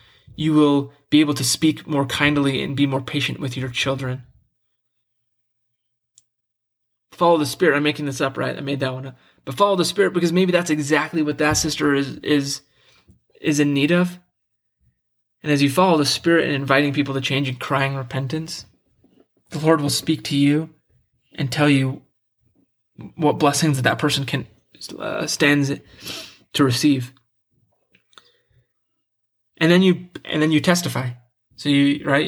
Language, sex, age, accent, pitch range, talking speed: English, male, 20-39, American, 130-155 Hz, 165 wpm